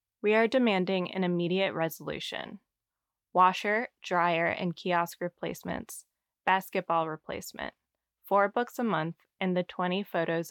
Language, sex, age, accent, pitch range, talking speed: English, female, 20-39, American, 165-195 Hz, 120 wpm